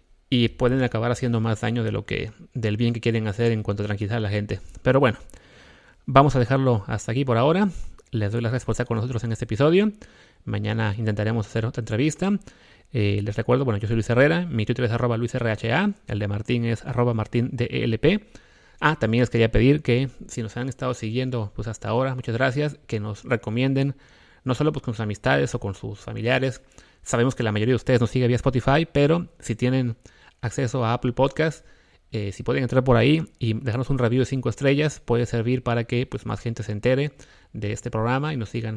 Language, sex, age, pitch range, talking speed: English, male, 30-49, 110-135 Hz, 215 wpm